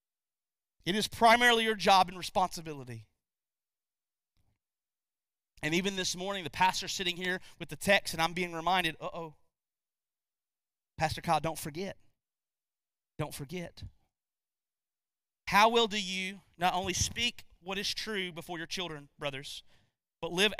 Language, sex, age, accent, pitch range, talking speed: English, male, 30-49, American, 160-235 Hz, 135 wpm